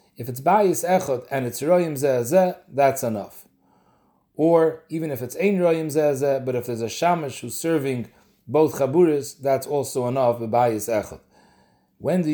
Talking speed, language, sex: 150 wpm, English, male